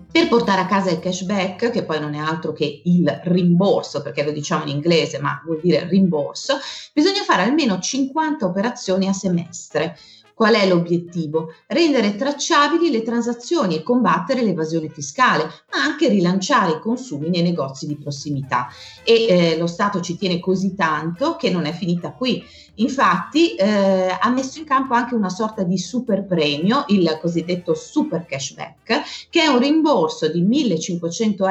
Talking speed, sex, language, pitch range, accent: 160 wpm, female, Italian, 160-235 Hz, native